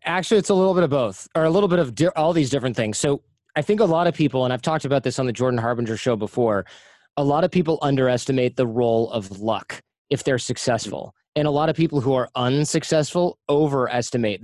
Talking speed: 230 wpm